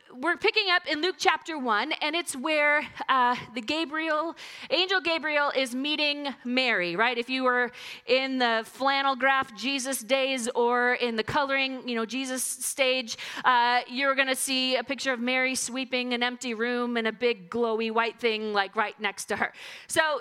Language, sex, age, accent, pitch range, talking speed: English, female, 30-49, American, 245-320 Hz, 180 wpm